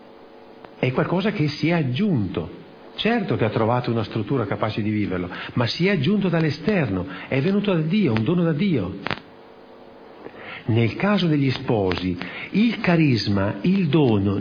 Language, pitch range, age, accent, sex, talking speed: Italian, 135-220 Hz, 50-69, native, male, 150 wpm